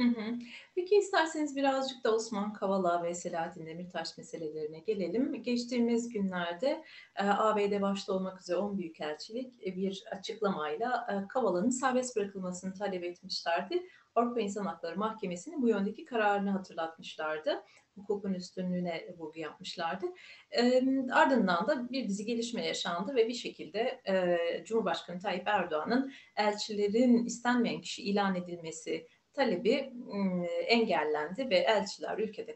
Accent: native